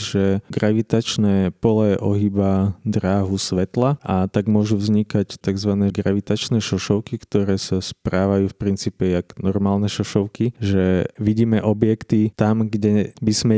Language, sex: Slovak, male